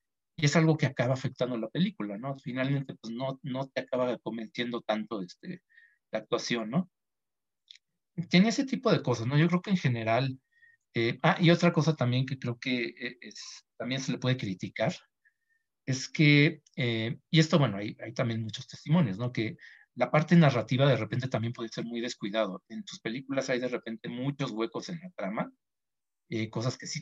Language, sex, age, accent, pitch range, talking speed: Spanish, male, 50-69, Mexican, 115-160 Hz, 190 wpm